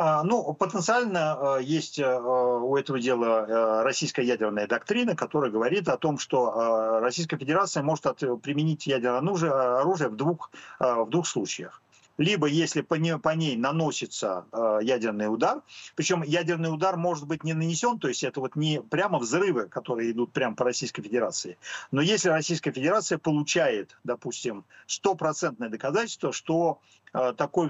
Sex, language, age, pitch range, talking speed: male, Ukrainian, 50-69, 130-170 Hz, 130 wpm